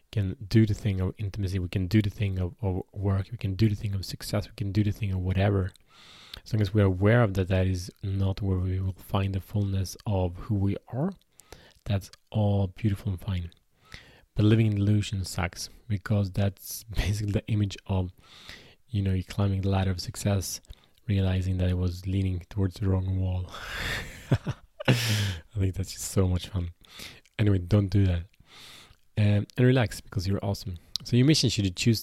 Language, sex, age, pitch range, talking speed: Swedish, male, 20-39, 95-105 Hz, 195 wpm